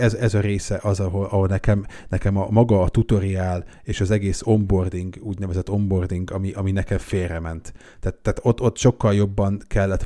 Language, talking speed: Hungarian, 180 wpm